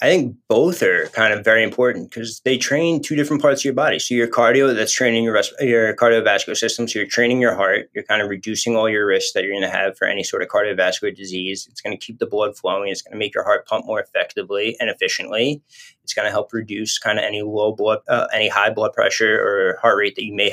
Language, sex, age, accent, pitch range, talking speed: English, male, 20-39, American, 110-140 Hz, 255 wpm